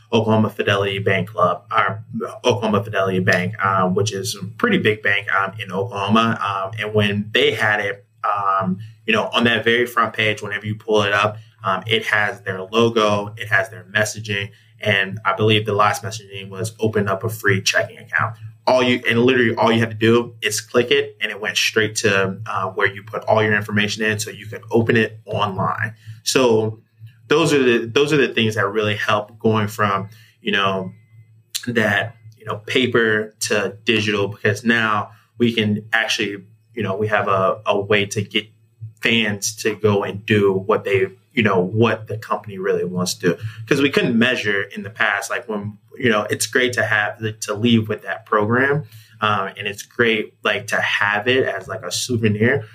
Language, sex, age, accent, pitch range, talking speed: English, male, 20-39, American, 105-115 Hz, 200 wpm